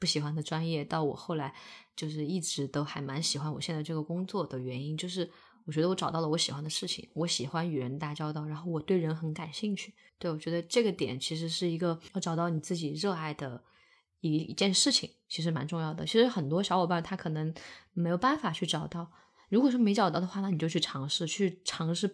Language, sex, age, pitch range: Chinese, female, 20-39, 155-190 Hz